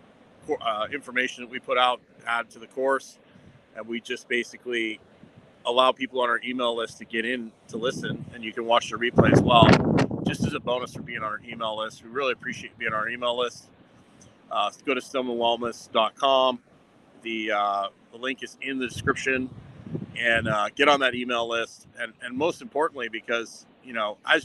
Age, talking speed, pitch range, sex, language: 30-49, 195 wpm, 110-125 Hz, male, English